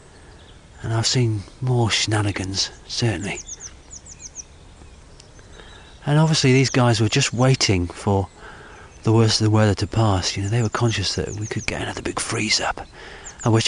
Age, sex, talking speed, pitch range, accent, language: 40-59, male, 150 wpm, 90-110 Hz, British, English